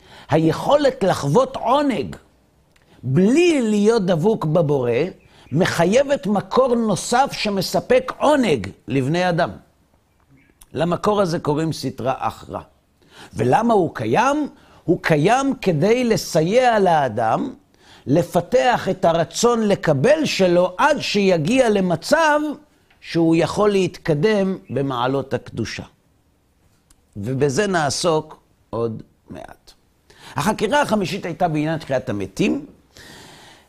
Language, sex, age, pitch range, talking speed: Hebrew, male, 50-69, 140-195 Hz, 90 wpm